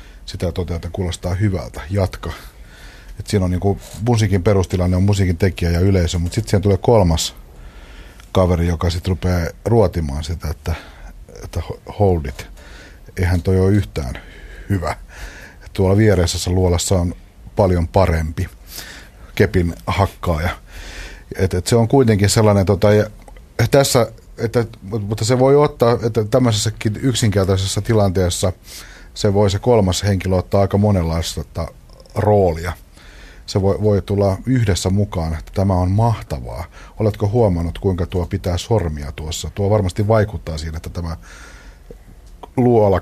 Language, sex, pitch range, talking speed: Finnish, male, 85-105 Hz, 135 wpm